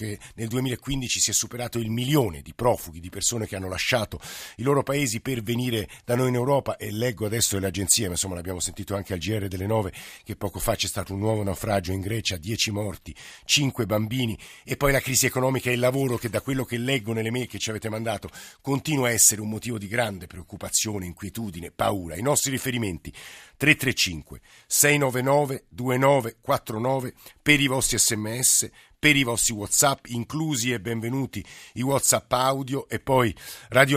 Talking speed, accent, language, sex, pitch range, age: 185 wpm, native, Italian, male, 105-130 Hz, 50-69